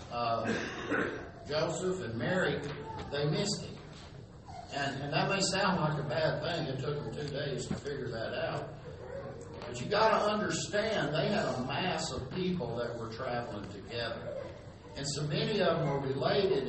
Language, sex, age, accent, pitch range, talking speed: English, male, 60-79, American, 135-185 Hz, 170 wpm